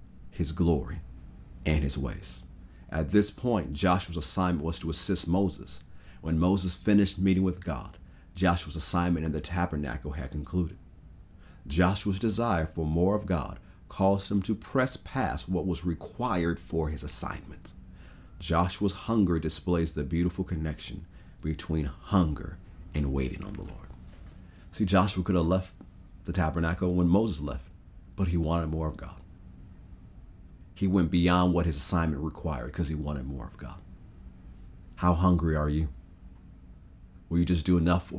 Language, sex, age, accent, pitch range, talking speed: English, male, 40-59, American, 75-90 Hz, 150 wpm